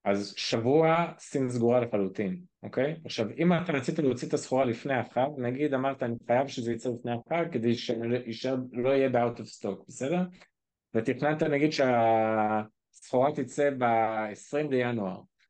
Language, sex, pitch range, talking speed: Hebrew, male, 110-145 Hz, 145 wpm